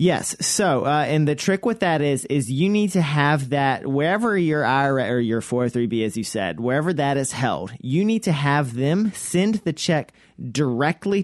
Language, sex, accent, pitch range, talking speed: English, male, American, 120-150 Hz, 200 wpm